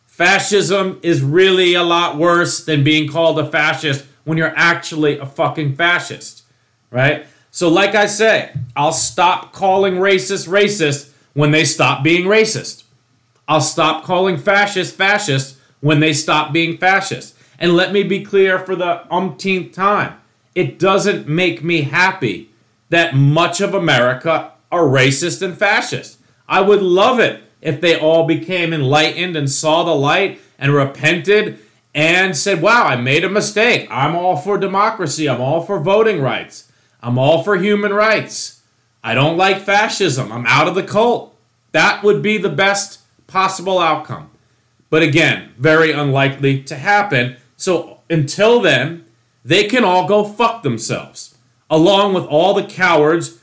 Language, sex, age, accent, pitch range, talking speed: English, male, 40-59, American, 140-190 Hz, 155 wpm